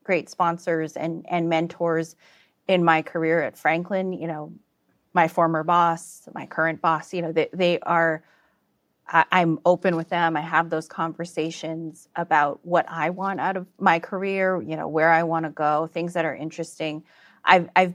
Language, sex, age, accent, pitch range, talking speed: English, female, 30-49, American, 165-195 Hz, 175 wpm